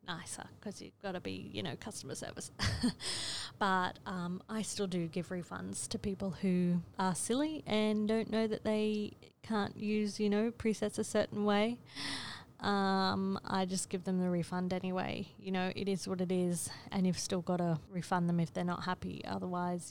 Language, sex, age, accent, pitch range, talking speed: English, female, 20-39, Australian, 180-210 Hz, 185 wpm